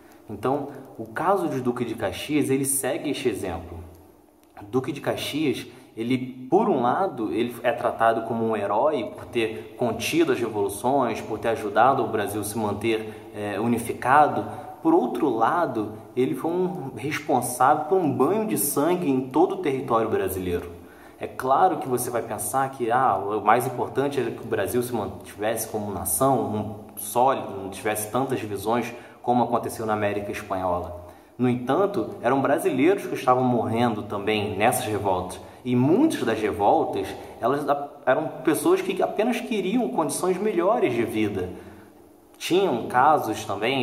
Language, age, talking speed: English, 20-39, 150 wpm